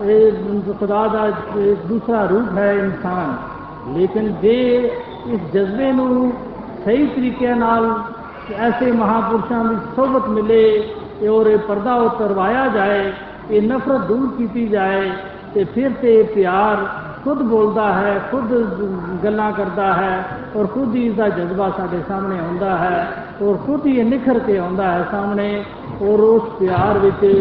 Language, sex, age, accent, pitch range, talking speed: Hindi, male, 60-79, native, 195-230 Hz, 120 wpm